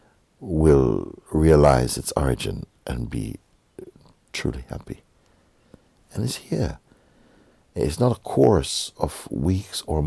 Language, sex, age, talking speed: English, male, 60-79, 120 wpm